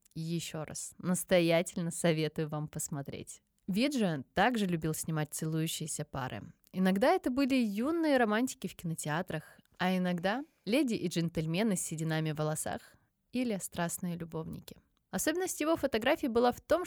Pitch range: 165-225 Hz